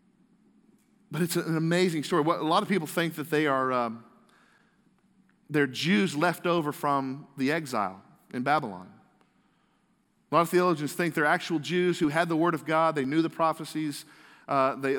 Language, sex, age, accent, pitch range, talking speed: English, male, 40-59, American, 140-175 Hz, 170 wpm